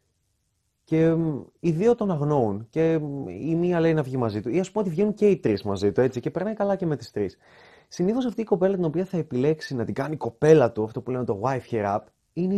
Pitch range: 115-165 Hz